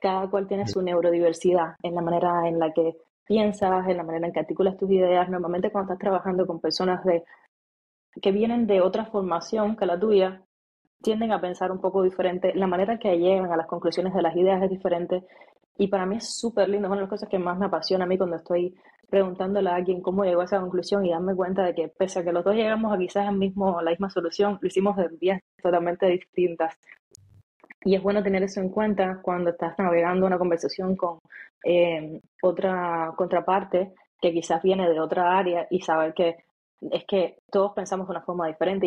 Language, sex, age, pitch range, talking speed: Spanish, female, 20-39, 170-195 Hz, 210 wpm